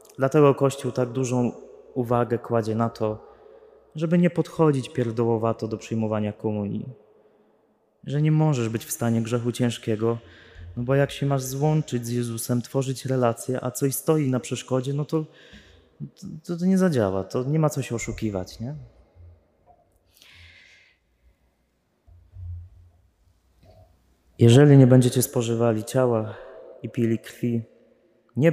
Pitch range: 105-130 Hz